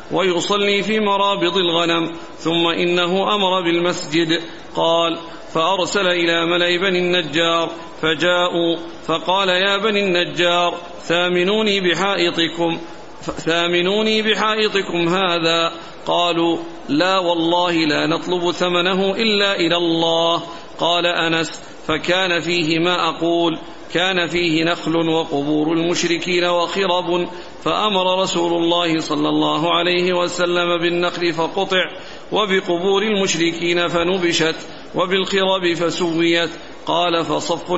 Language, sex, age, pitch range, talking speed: Arabic, male, 50-69, 165-185 Hz, 95 wpm